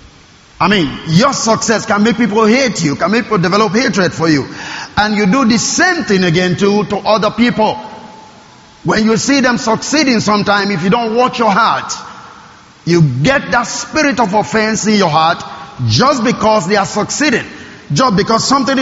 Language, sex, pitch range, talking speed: English, male, 195-240 Hz, 180 wpm